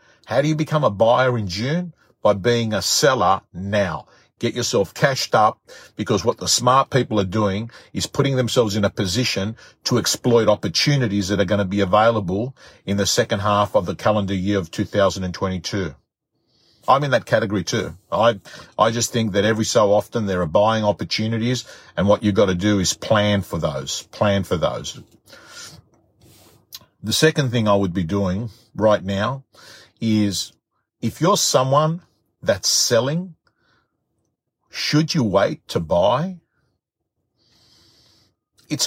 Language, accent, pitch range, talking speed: English, Australian, 95-120 Hz, 155 wpm